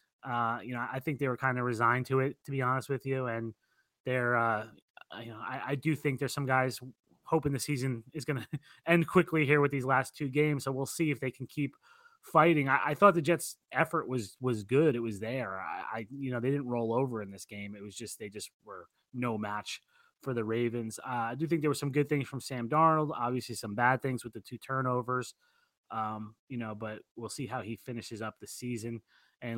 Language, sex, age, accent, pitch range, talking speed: English, male, 20-39, American, 115-145 Hz, 235 wpm